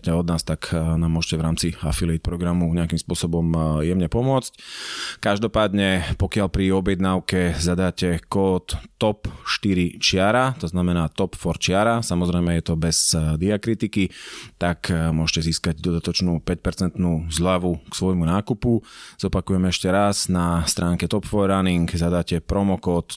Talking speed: 125 wpm